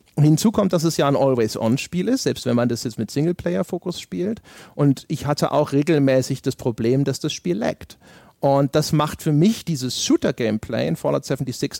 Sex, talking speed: male, 195 wpm